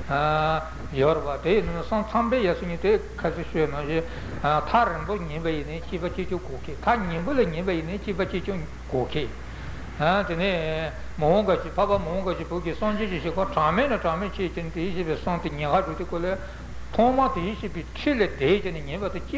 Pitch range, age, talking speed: 150-195 Hz, 60-79, 30 wpm